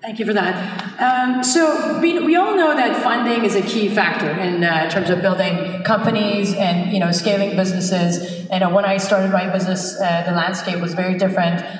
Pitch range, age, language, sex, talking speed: 180-210 Hz, 30-49, English, female, 205 wpm